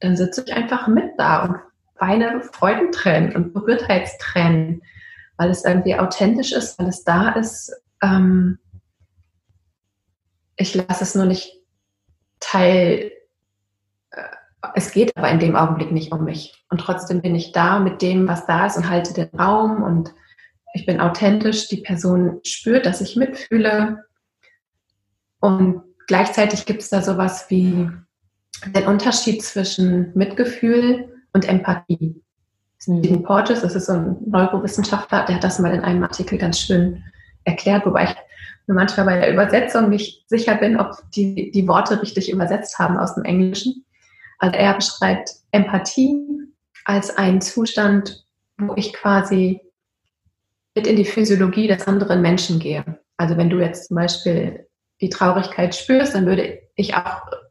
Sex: female